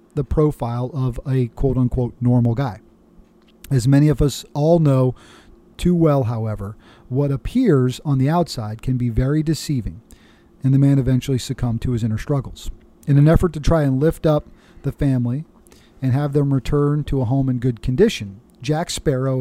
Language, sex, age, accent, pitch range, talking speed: English, male, 40-59, American, 120-150 Hz, 175 wpm